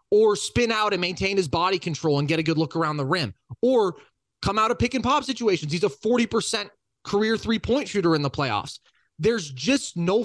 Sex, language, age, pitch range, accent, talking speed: male, English, 20-39, 155-215 Hz, American, 215 wpm